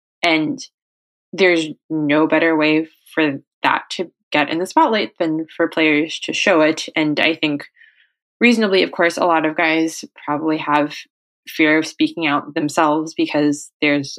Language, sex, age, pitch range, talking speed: English, female, 20-39, 155-185 Hz, 155 wpm